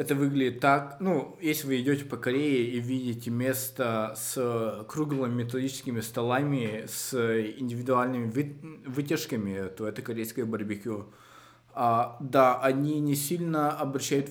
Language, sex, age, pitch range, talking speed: Russian, male, 20-39, 115-140 Hz, 115 wpm